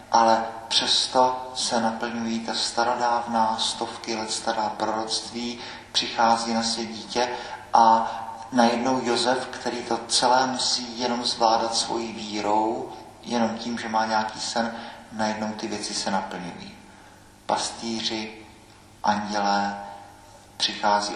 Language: Czech